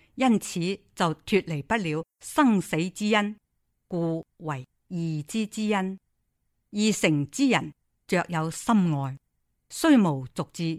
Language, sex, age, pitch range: Chinese, female, 50-69, 155-215 Hz